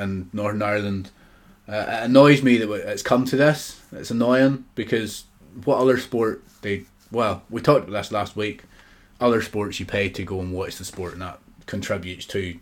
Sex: male